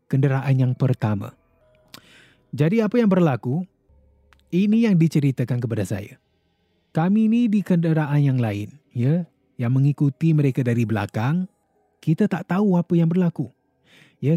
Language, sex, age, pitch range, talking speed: Malay, male, 30-49, 120-185 Hz, 130 wpm